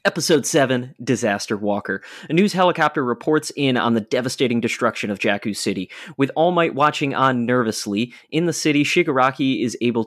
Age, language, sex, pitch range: 20-39, English, male, 115-140 Hz